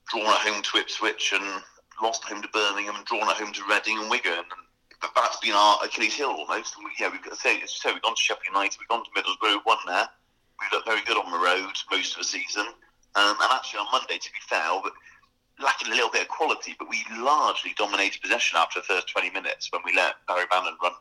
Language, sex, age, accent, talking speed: English, male, 40-59, British, 250 wpm